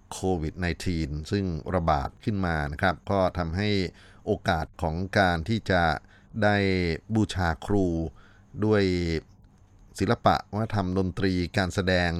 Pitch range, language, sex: 85-100 Hz, Thai, male